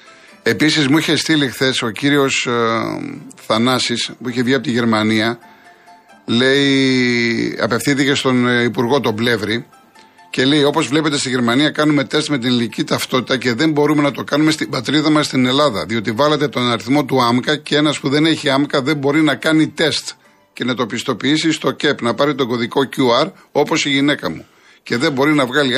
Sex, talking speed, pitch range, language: male, 185 wpm, 120-155 Hz, Greek